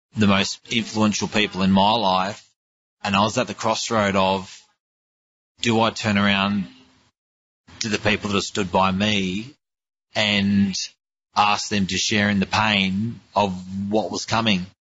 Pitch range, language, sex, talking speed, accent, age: 95-110 Hz, English, male, 150 wpm, Australian, 30-49